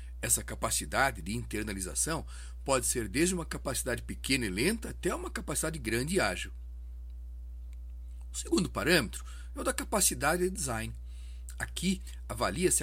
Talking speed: 135 wpm